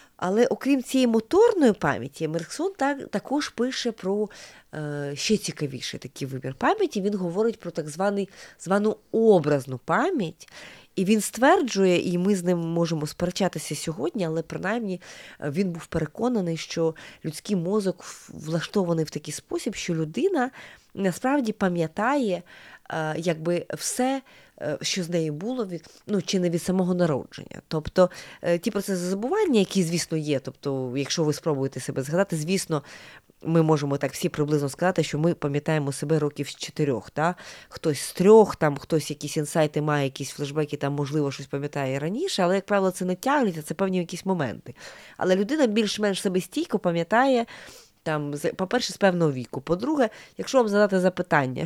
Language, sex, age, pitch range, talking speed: Ukrainian, female, 30-49, 155-205 Hz, 150 wpm